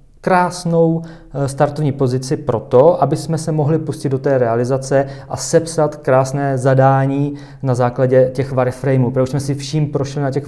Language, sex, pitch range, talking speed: Czech, male, 135-160 Hz, 155 wpm